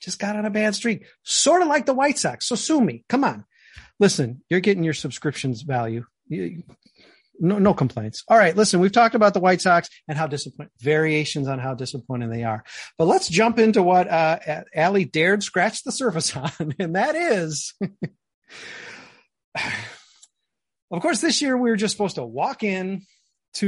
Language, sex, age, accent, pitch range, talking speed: English, male, 40-59, American, 145-210 Hz, 180 wpm